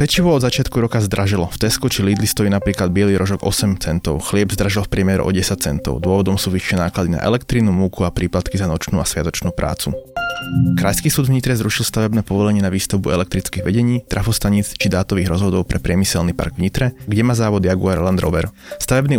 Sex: male